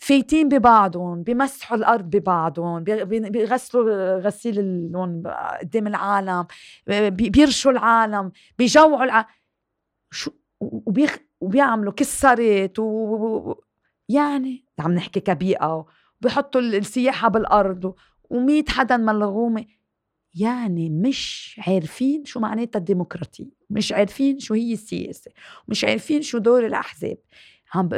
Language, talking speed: Arabic, 100 wpm